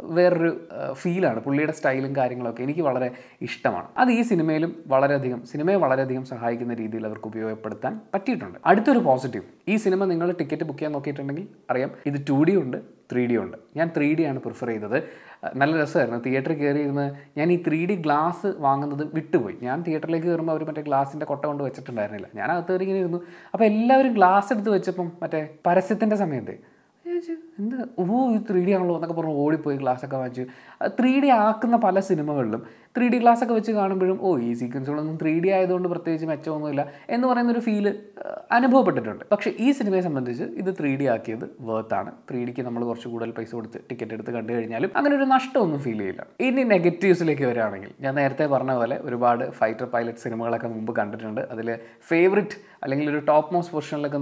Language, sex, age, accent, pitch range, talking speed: Malayalam, male, 20-39, native, 125-190 Hz, 160 wpm